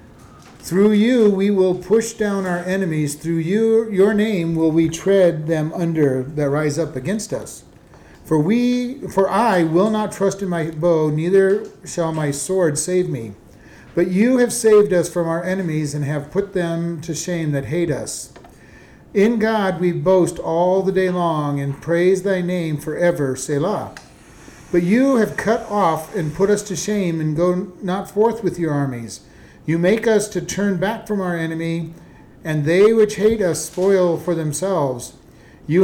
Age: 40-59